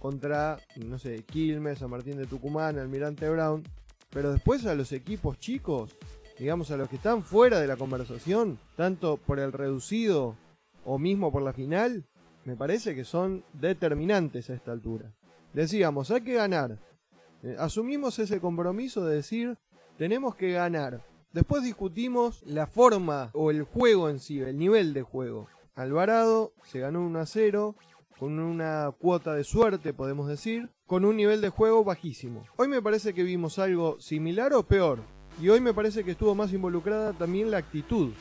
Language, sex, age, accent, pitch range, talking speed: Spanish, male, 20-39, Argentinian, 140-210 Hz, 165 wpm